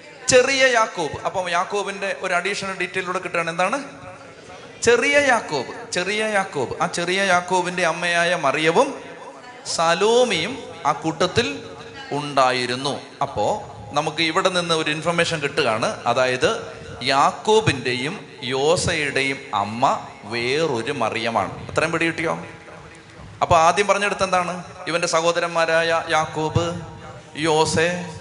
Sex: male